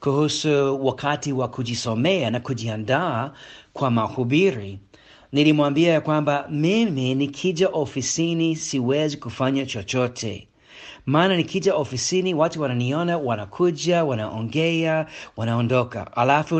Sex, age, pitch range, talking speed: male, 40-59, 130-175 Hz, 90 wpm